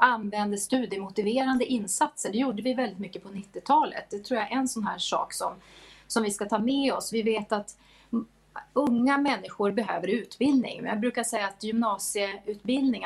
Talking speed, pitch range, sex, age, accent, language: 170 wpm, 200-235 Hz, female, 30-49, Swedish, English